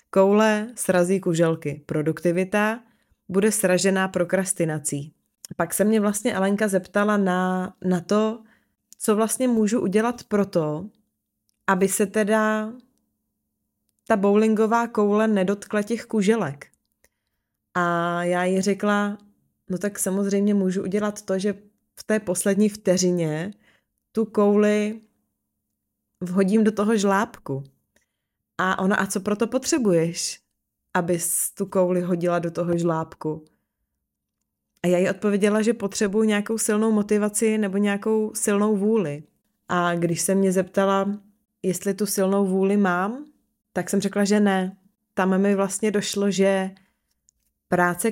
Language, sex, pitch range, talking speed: Czech, female, 180-210 Hz, 125 wpm